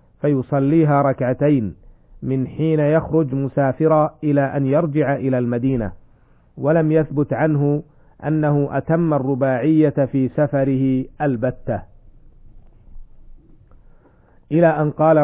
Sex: male